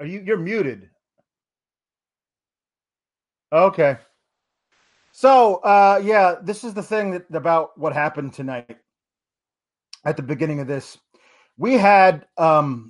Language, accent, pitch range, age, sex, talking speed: English, American, 140-195 Hz, 30-49, male, 115 wpm